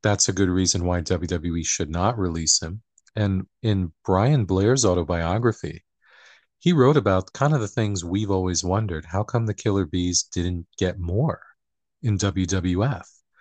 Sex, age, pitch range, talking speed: male, 40-59, 90-105 Hz, 155 wpm